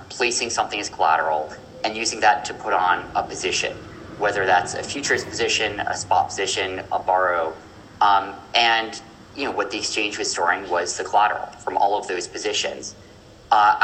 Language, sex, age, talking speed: English, male, 30-49, 175 wpm